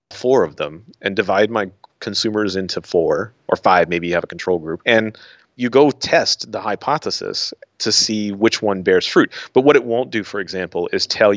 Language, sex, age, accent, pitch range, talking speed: English, male, 30-49, American, 95-115 Hz, 200 wpm